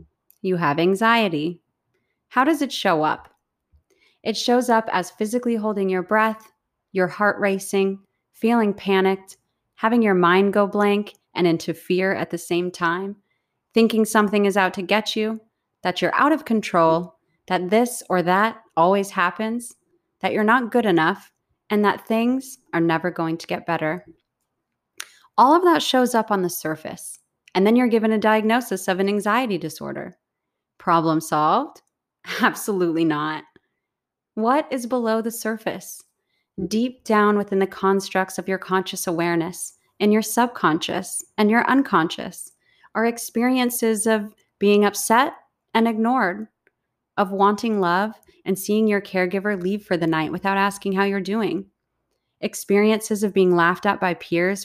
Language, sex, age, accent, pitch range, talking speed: English, female, 30-49, American, 180-225 Hz, 150 wpm